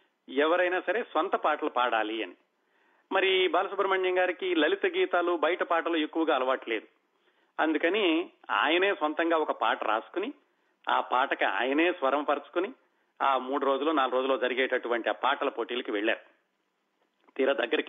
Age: 40-59